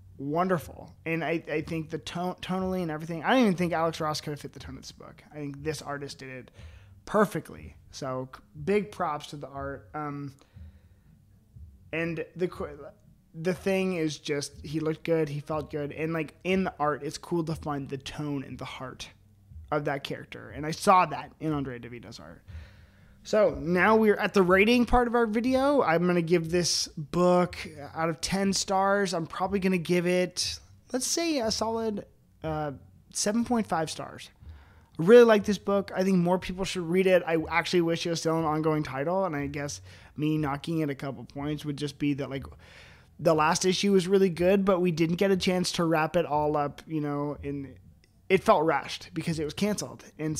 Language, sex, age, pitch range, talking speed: English, male, 20-39, 145-180 Hz, 200 wpm